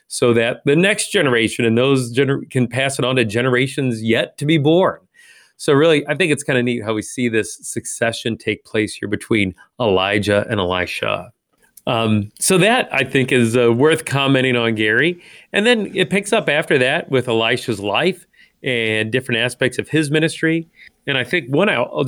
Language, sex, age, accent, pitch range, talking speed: English, male, 40-59, American, 115-150 Hz, 190 wpm